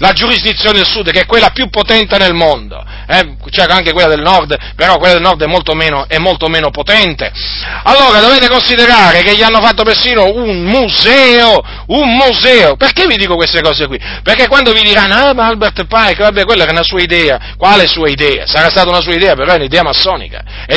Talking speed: 210 wpm